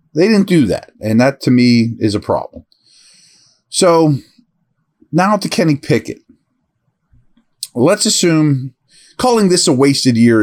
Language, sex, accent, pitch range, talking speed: English, male, American, 125-175 Hz, 130 wpm